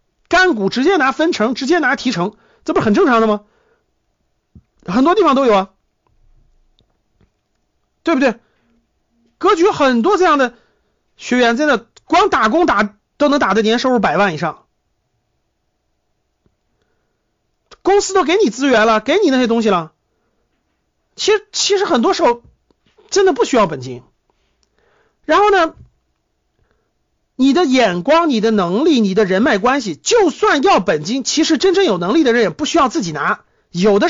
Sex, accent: male, native